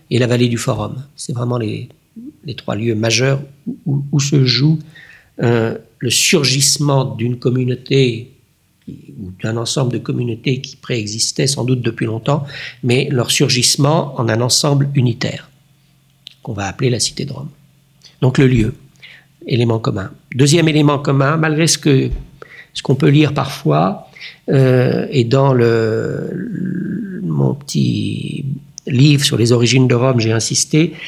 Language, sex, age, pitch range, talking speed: French, male, 60-79, 125-155 Hz, 145 wpm